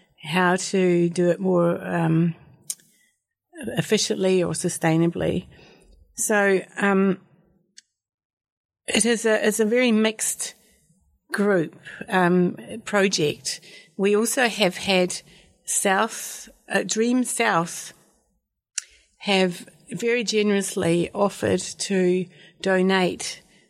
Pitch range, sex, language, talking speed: 175-210 Hz, female, English, 90 wpm